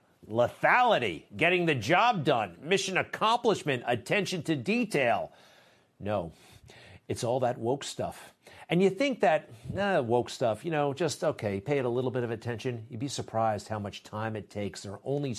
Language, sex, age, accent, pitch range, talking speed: English, male, 50-69, American, 115-150 Hz, 175 wpm